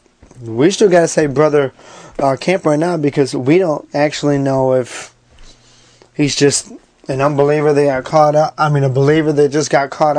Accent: American